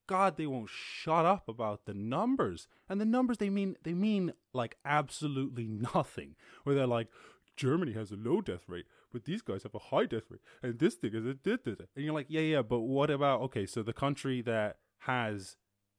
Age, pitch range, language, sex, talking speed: 20-39, 105-140 Hz, English, male, 205 wpm